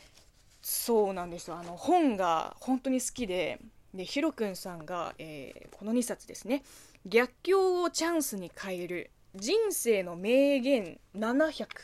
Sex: female